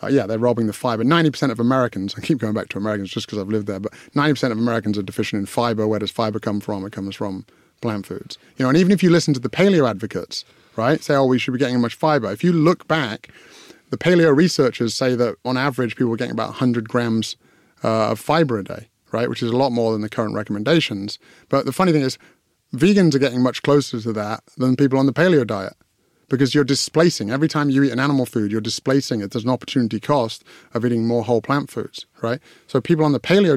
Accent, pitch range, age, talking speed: British, 115-145 Hz, 30-49, 245 wpm